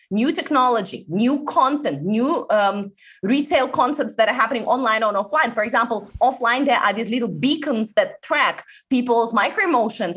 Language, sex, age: English, female, 20-39